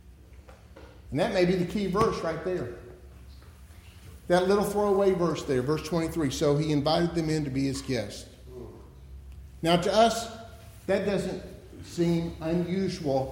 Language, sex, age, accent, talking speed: English, male, 50-69, American, 145 wpm